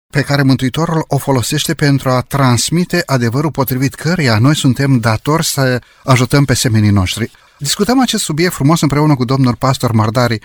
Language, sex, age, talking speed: Romanian, male, 30-49, 160 wpm